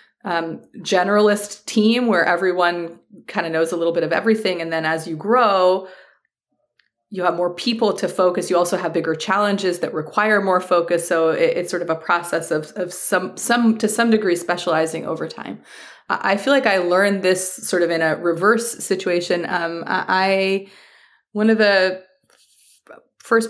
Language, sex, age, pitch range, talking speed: English, female, 30-49, 170-215 Hz, 175 wpm